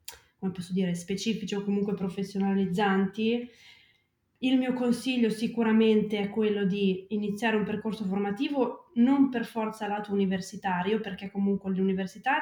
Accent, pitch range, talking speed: native, 195-220 Hz, 125 wpm